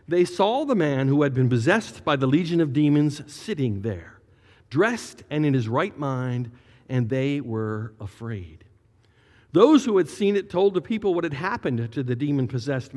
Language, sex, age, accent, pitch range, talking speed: English, male, 50-69, American, 115-175 Hz, 180 wpm